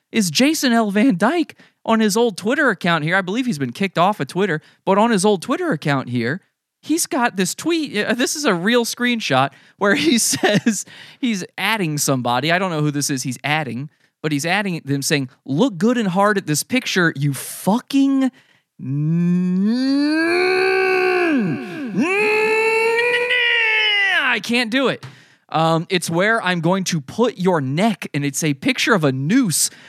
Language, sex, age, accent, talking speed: English, male, 20-39, American, 165 wpm